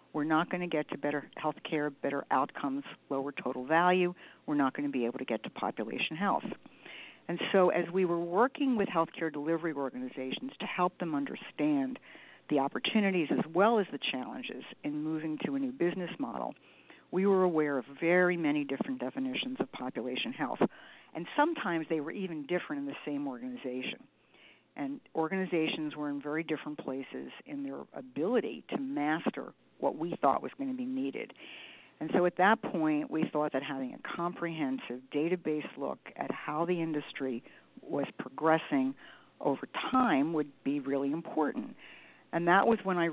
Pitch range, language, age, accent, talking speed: 145-205 Hz, English, 50-69, American, 175 wpm